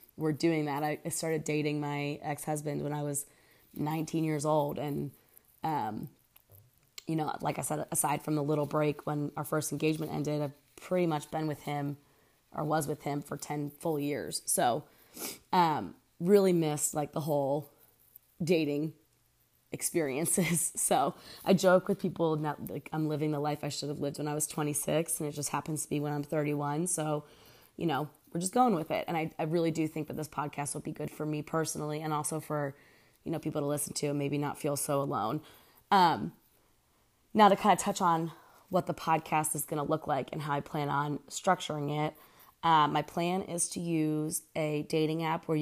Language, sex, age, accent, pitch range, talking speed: English, female, 20-39, American, 145-160 Hz, 205 wpm